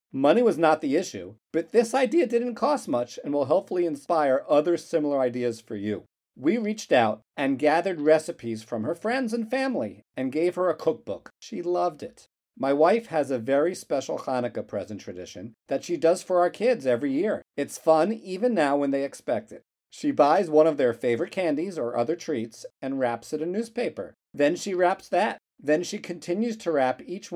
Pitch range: 125-180 Hz